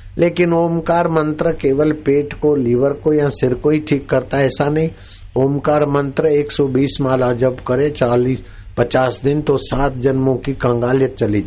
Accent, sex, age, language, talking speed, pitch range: native, male, 60-79, Hindi, 165 wpm, 100-130 Hz